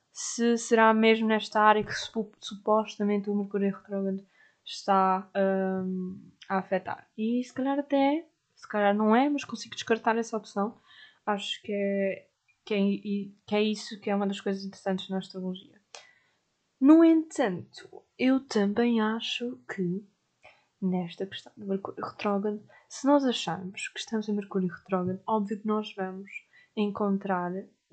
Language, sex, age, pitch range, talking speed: Portuguese, female, 20-39, 190-215 Hz, 145 wpm